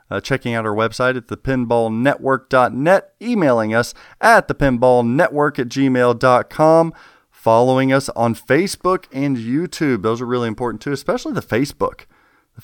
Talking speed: 135 wpm